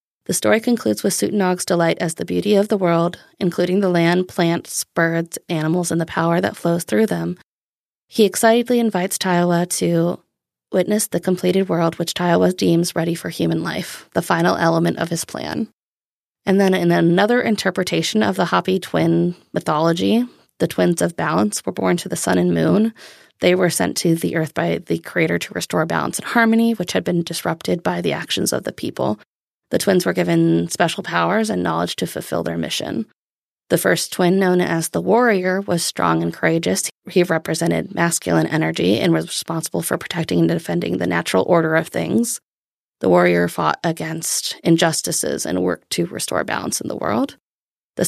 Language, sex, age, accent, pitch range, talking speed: English, female, 20-39, American, 110-185 Hz, 180 wpm